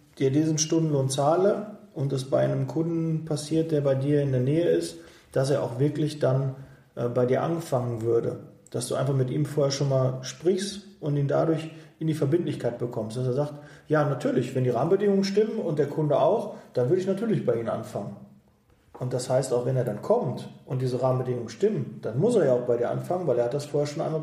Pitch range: 125-160 Hz